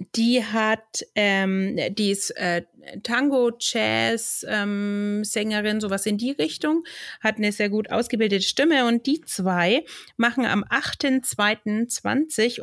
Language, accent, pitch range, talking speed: German, German, 195-240 Hz, 125 wpm